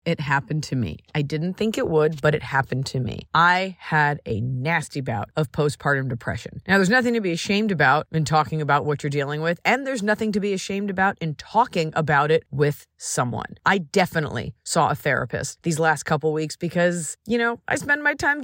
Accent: American